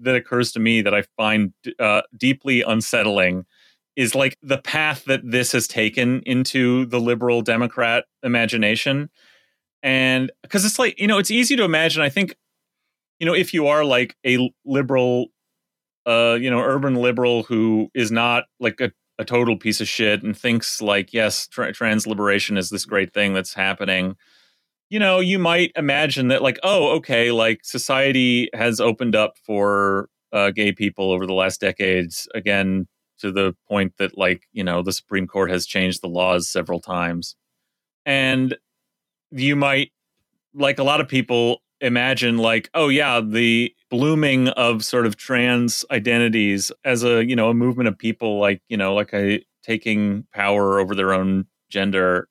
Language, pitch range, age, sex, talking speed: English, 100-130 Hz, 30-49, male, 165 wpm